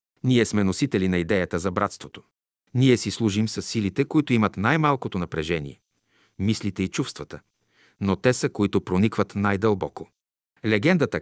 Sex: male